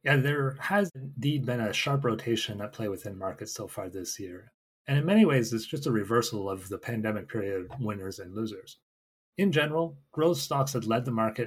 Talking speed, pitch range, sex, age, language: 210 wpm, 105-140 Hz, male, 30-49, English